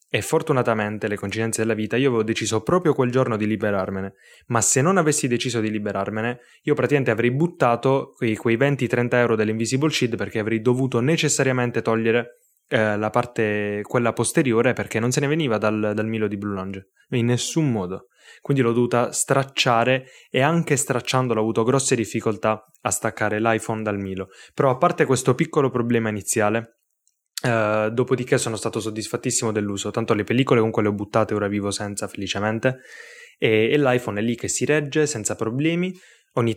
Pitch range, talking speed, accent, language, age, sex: 105-130 Hz, 175 wpm, native, Italian, 10-29, male